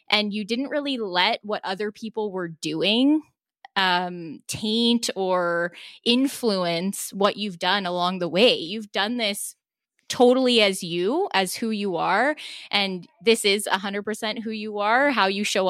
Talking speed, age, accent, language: 155 wpm, 10-29, American, English